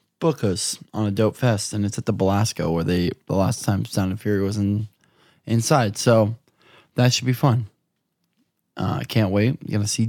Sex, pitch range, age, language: male, 100-125 Hz, 20-39, English